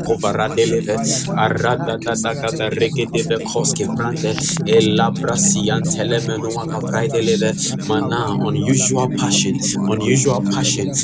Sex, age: male, 20-39